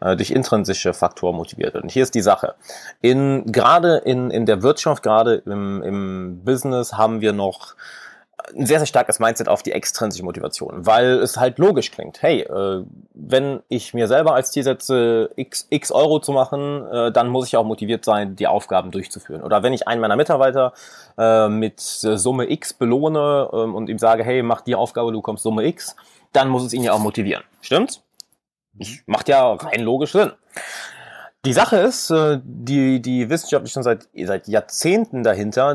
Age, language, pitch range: 20-39, English, 110-135 Hz